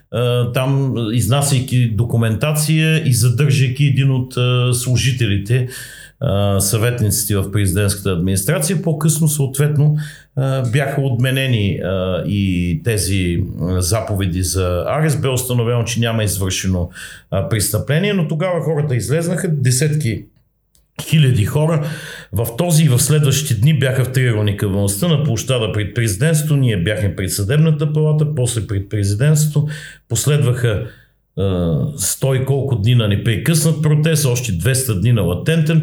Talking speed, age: 115 wpm, 50-69